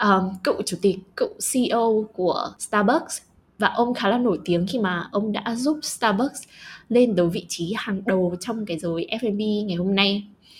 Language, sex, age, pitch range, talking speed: Vietnamese, female, 10-29, 185-235 Hz, 185 wpm